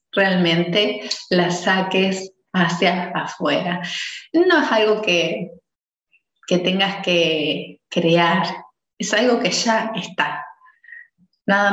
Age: 30-49